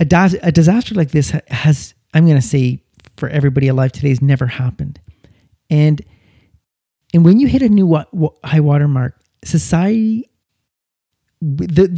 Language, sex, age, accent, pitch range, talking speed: English, male, 40-59, American, 130-175 Hz, 145 wpm